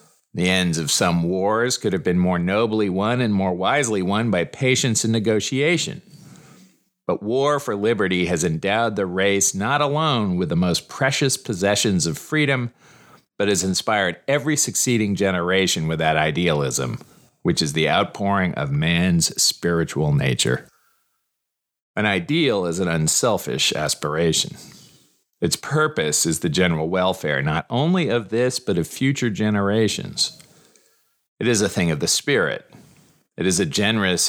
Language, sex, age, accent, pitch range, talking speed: English, male, 40-59, American, 85-125 Hz, 145 wpm